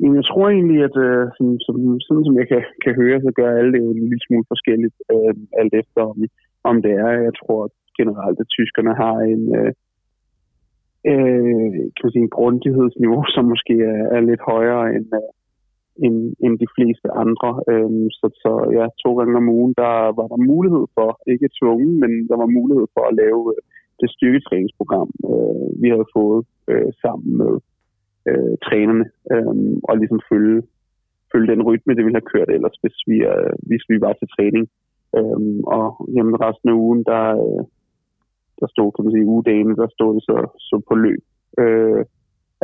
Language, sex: Danish, male